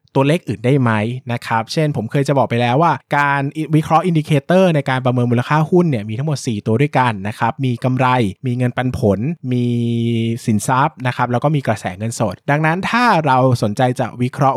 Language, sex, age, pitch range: Thai, male, 20-39, 120-150 Hz